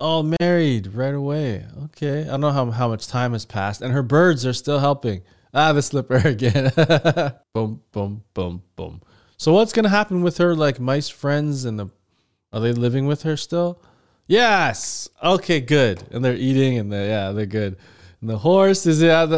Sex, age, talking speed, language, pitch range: male, 20-39, 190 wpm, English, 110-150 Hz